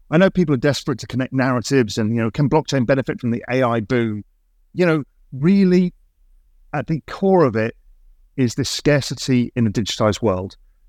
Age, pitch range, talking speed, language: 40-59, 100-130 Hz, 180 wpm, English